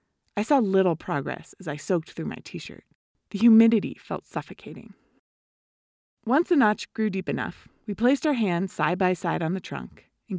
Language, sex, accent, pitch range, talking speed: English, female, American, 170-240 Hz, 180 wpm